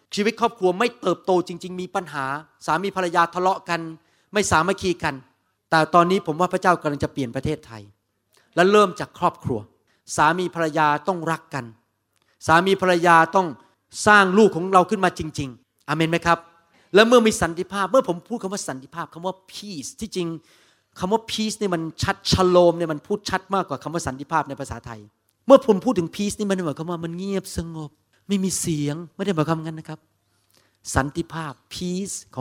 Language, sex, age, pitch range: Thai, male, 30-49, 135-190 Hz